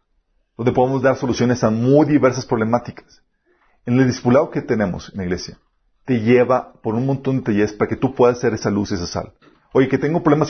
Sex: male